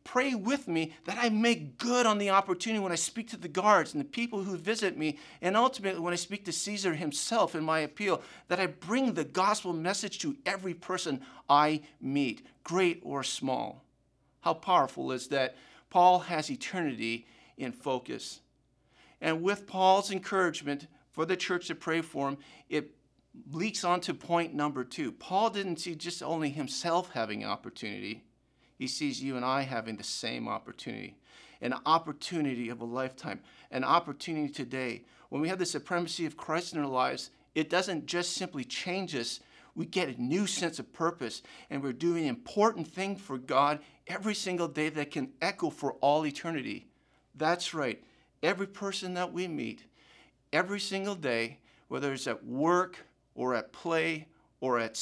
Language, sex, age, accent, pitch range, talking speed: English, male, 50-69, American, 145-190 Hz, 170 wpm